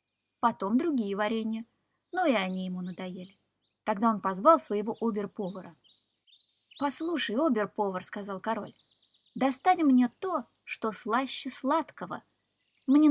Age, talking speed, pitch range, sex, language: 20-39, 110 wpm, 200-265 Hz, female, Russian